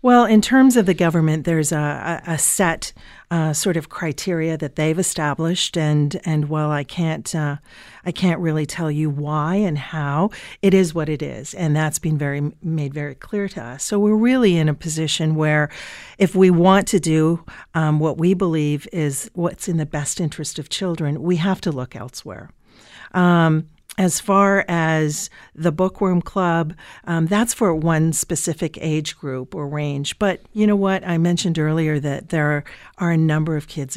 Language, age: English, 50-69